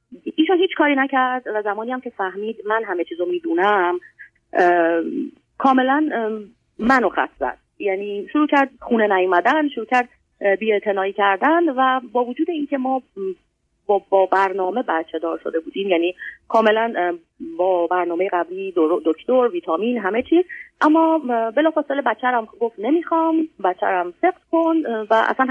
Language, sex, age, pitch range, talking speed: Persian, female, 30-49, 190-290 Hz, 140 wpm